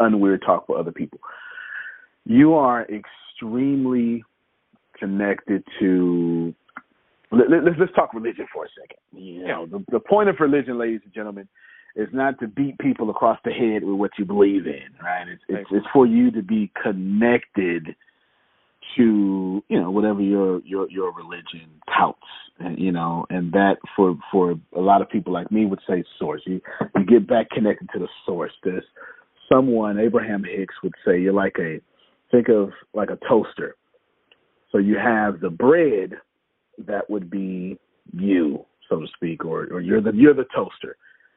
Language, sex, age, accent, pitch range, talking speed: English, male, 40-59, American, 95-130 Hz, 170 wpm